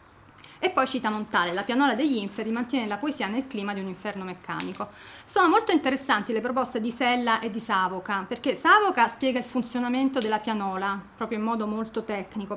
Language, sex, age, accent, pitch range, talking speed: Italian, female, 30-49, native, 205-270 Hz, 185 wpm